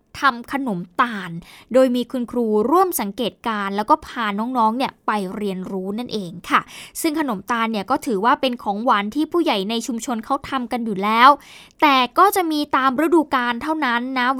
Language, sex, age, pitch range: Thai, female, 10-29, 225-280 Hz